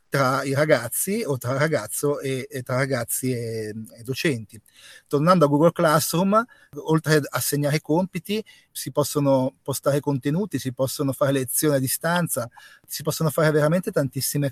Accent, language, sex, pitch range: native, Italian, male, 135-155 Hz